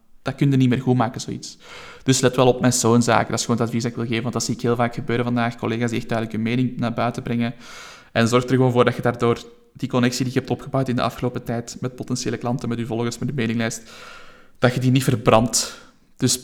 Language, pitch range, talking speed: Dutch, 115-125 Hz, 265 wpm